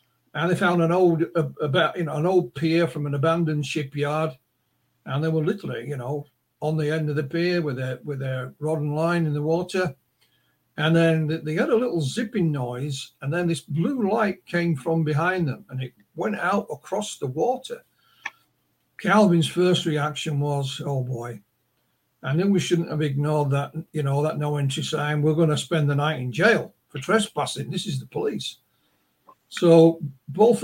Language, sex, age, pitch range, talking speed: English, male, 60-79, 145-175 Hz, 190 wpm